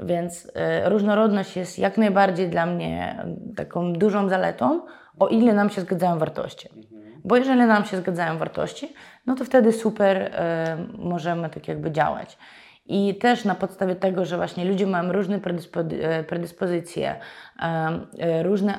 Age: 20-39